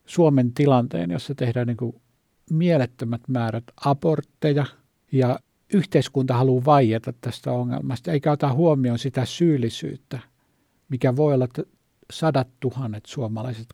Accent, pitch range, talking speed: native, 120-150 Hz, 120 wpm